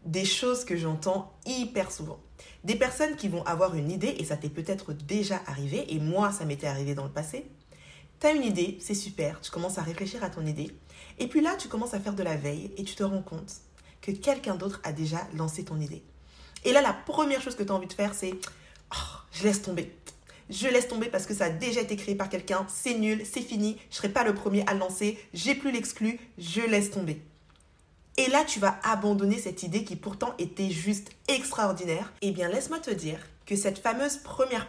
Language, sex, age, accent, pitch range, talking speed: French, female, 20-39, French, 160-210 Hz, 230 wpm